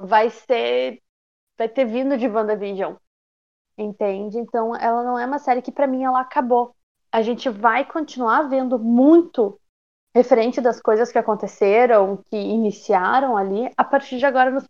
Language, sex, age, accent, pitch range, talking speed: Portuguese, female, 20-39, Brazilian, 215-260 Hz, 155 wpm